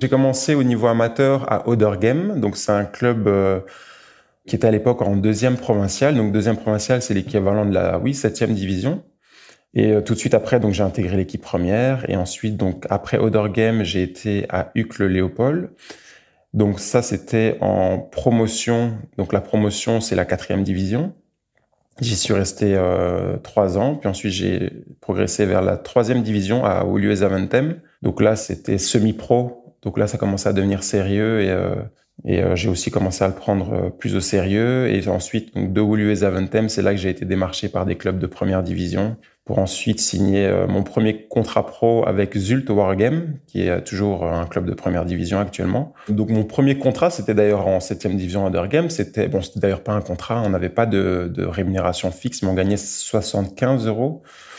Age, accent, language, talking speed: 20-39, French, French, 190 wpm